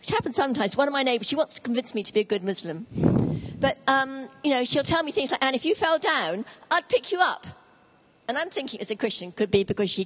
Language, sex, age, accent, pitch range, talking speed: English, female, 50-69, British, 195-260 Hz, 270 wpm